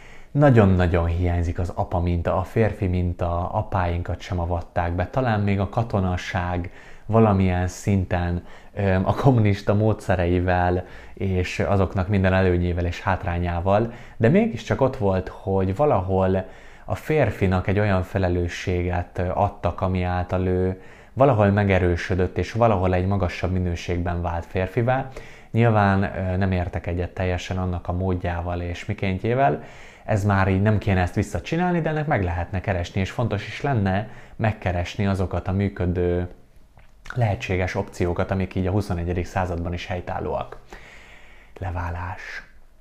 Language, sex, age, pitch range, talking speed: Hungarian, male, 20-39, 90-110 Hz, 130 wpm